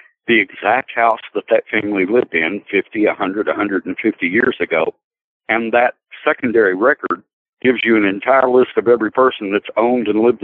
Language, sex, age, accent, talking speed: English, male, 60-79, American, 165 wpm